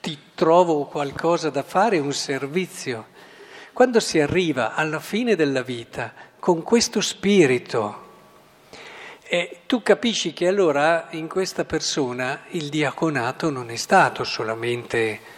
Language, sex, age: Italian, male, 50-69